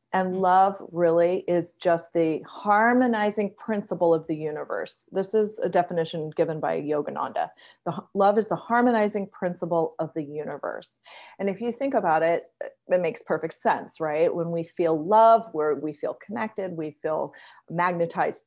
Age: 30-49